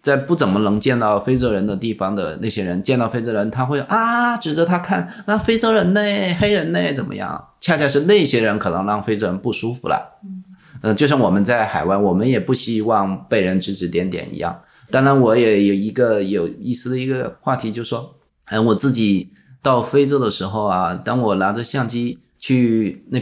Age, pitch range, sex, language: 30-49, 105-150 Hz, male, Chinese